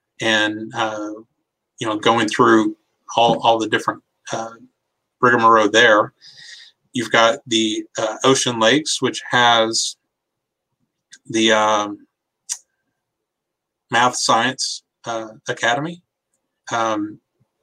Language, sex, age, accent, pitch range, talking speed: English, male, 30-49, American, 110-130 Hz, 95 wpm